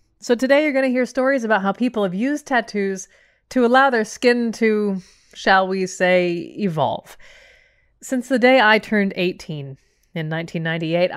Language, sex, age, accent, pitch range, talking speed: English, female, 30-49, American, 180-235 Hz, 160 wpm